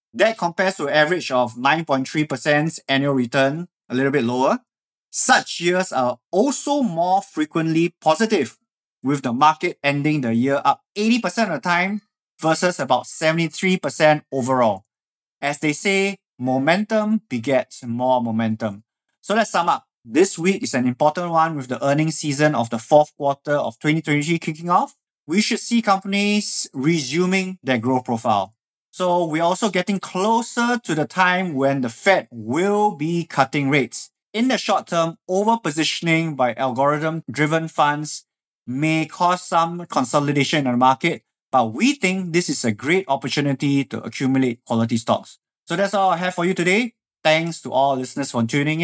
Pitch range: 135-185 Hz